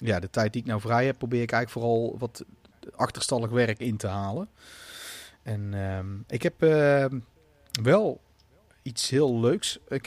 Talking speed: 165 wpm